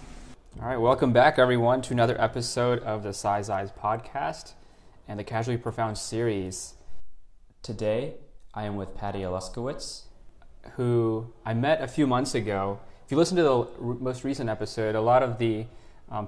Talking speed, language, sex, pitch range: 165 wpm, English, male, 100-115 Hz